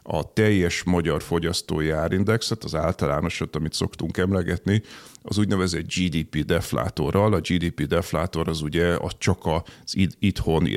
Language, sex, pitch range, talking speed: Hungarian, male, 80-105 Hz, 130 wpm